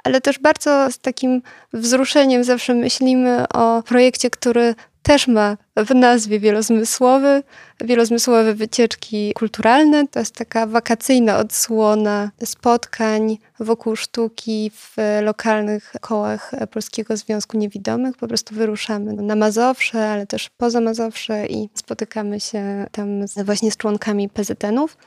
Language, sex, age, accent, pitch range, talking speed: Polish, female, 20-39, native, 215-245 Hz, 120 wpm